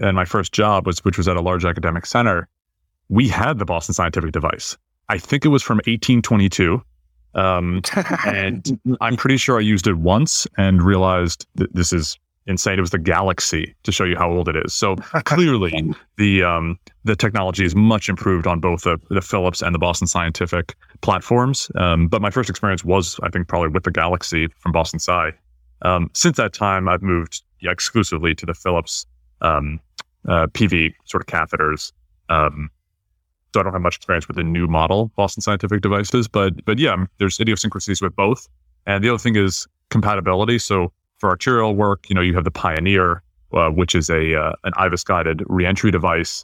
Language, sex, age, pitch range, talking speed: English, male, 30-49, 85-105 Hz, 190 wpm